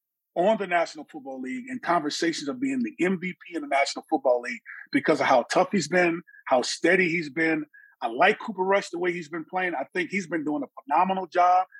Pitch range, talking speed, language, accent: 175-220 Hz, 220 wpm, English, American